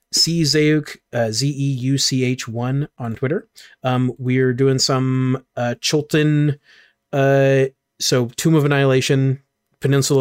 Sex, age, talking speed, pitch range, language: male, 30-49, 105 wpm, 120-140 Hz, English